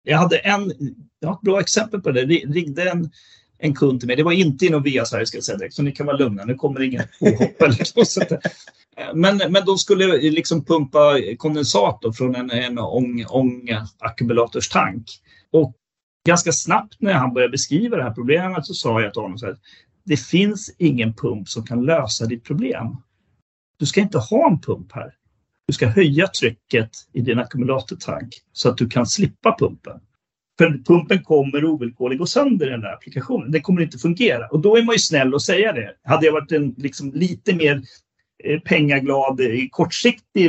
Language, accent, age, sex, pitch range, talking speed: Swedish, native, 40-59, male, 125-175 Hz, 180 wpm